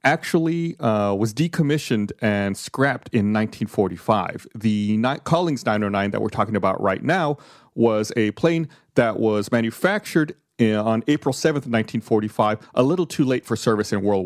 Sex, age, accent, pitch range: male, 40-59, American, 105-140 Hz